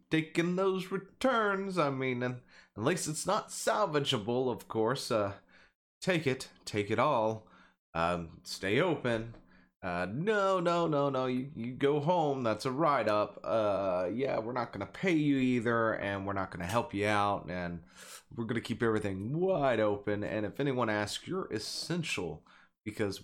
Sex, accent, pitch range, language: male, American, 95-130 Hz, English